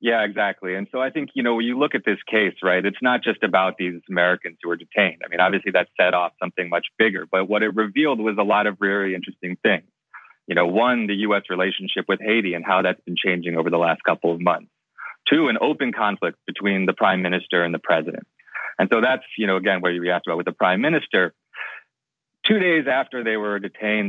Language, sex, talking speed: English, male, 235 wpm